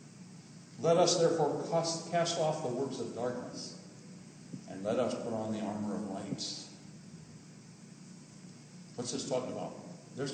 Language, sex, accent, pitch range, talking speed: English, male, American, 170-240 Hz, 135 wpm